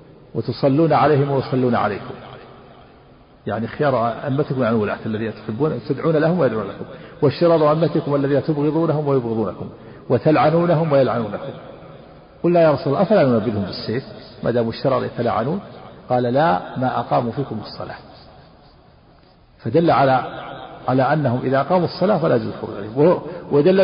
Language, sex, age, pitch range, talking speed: Arabic, male, 50-69, 125-160 Hz, 130 wpm